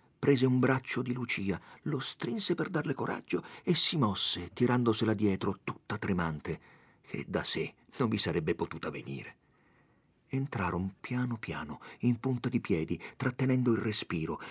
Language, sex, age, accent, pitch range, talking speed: Italian, male, 50-69, native, 100-140 Hz, 145 wpm